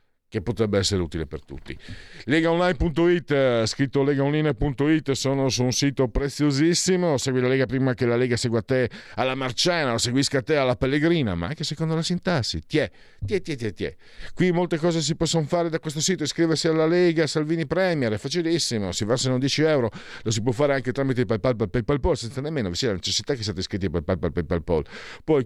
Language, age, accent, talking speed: Italian, 50-69, native, 190 wpm